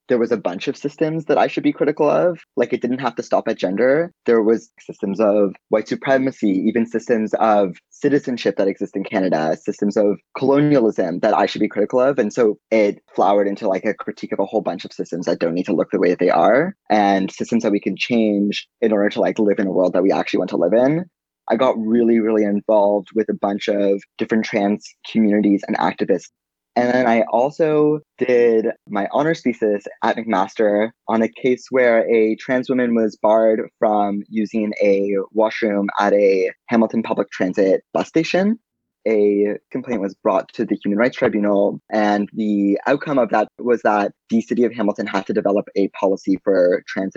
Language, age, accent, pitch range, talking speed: English, 20-39, American, 100-125 Hz, 200 wpm